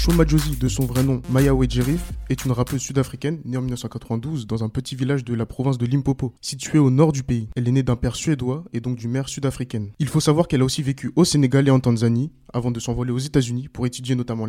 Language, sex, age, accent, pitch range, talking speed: French, male, 20-39, French, 125-145 Hz, 250 wpm